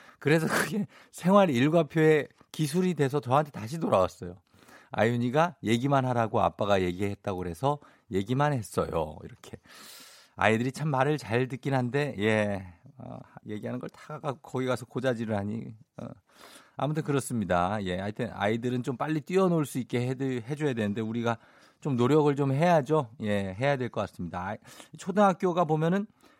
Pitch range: 110-155 Hz